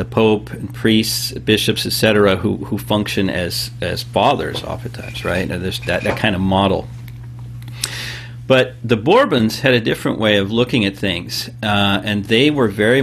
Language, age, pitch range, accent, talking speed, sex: English, 40-59, 105-120 Hz, American, 170 wpm, male